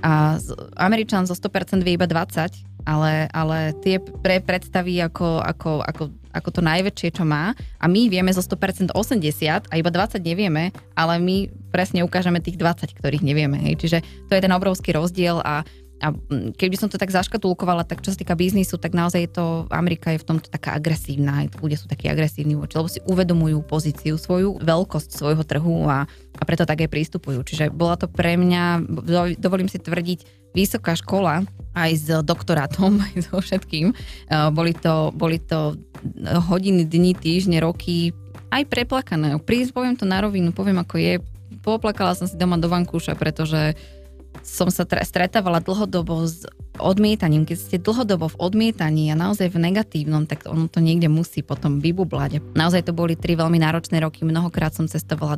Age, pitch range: 20-39, 155-185 Hz